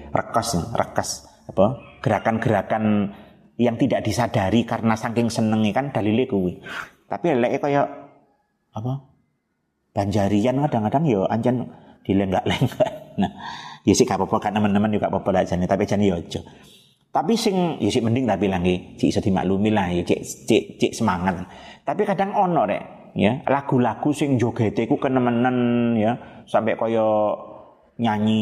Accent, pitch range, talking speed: native, 100-130 Hz, 110 wpm